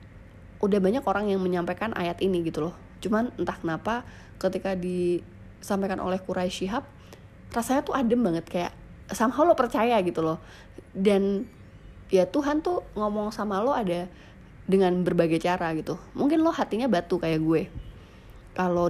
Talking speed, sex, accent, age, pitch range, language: 145 wpm, female, native, 20-39, 165-210 Hz, Indonesian